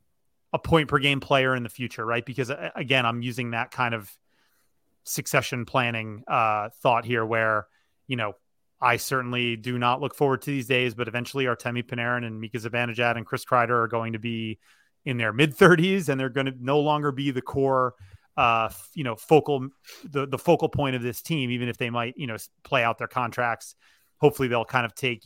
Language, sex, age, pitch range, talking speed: English, male, 30-49, 115-135 Hz, 205 wpm